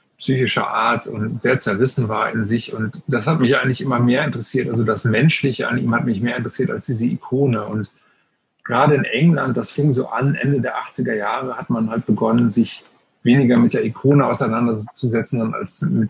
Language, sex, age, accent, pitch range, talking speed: German, male, 30-49, German, 110-130 Hz, 195 wpm